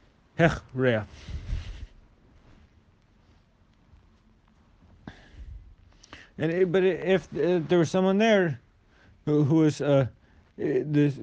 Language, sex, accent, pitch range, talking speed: English, male, American, 110-150 Hz, 75 wpm